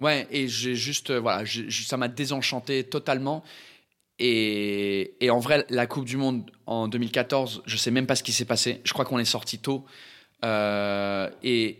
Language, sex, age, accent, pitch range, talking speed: French, male, 20-39, French, 110-135 Hz, 190 wpm